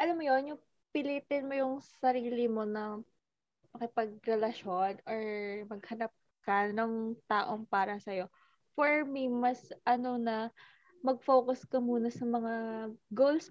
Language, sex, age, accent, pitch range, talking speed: Filipino, female, 20-39, native, 220-255 Hz, 130 wpm